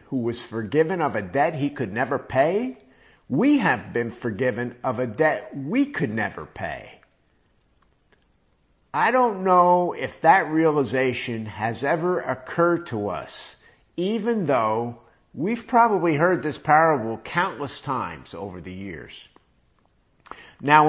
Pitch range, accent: 115-175 Hz, American